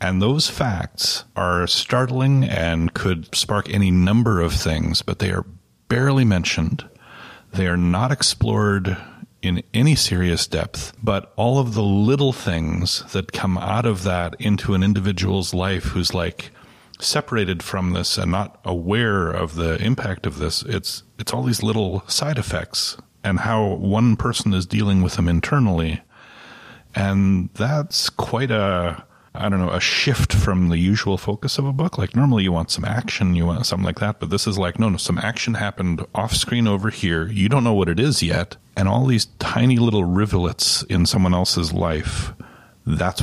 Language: English